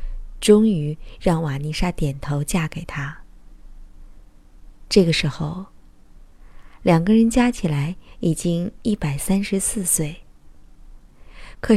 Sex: female